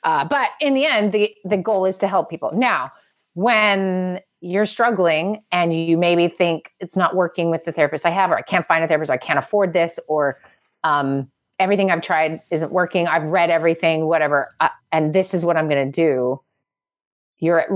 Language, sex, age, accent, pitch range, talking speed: English, female, 30-49, American, 150-190 Hz, 205 wpm